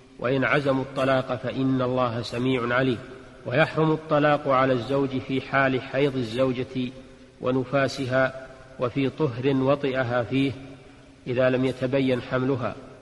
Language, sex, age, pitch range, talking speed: Arabic, male, 40-59, 125-140 Hz, 110 wpm